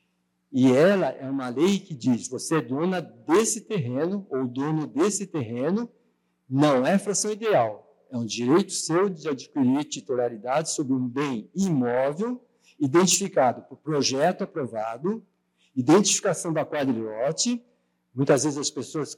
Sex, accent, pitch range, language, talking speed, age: male, Brazilian, 135-190 Hz, Portuguese, 130 wpm, 60-79